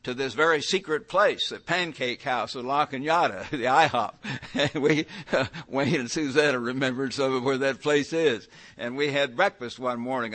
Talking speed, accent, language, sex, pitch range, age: 185 wpm, American, English, male, 130-165 Hz, 60-79